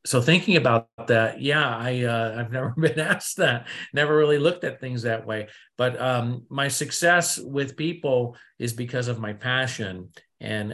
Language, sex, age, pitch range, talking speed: English, male, 50-69, 115-140 Hz, 175 wpm